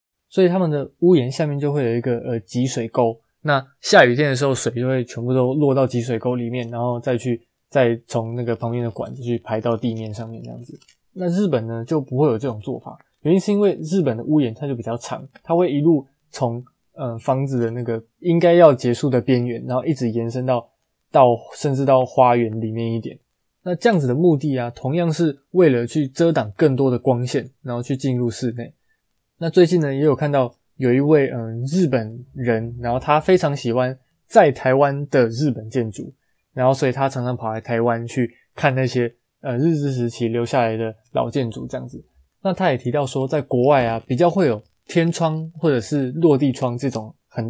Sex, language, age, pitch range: male, Chinese, 20-39, 120-150 Hz